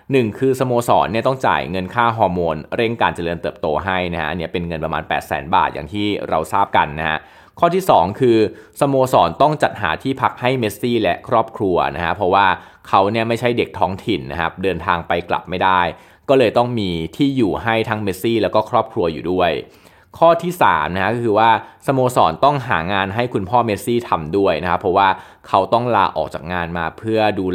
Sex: male